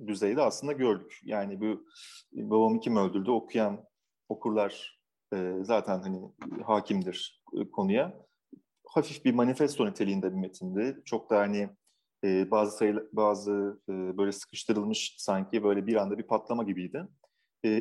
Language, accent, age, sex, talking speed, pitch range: Turkish, native, 30-49, male, 135 wpm, 100-145 Hz